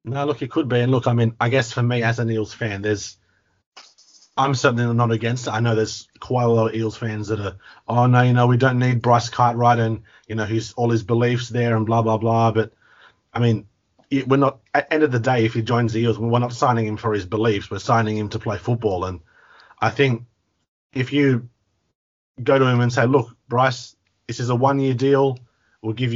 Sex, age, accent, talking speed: male, 30-49, Australian, 235 wpm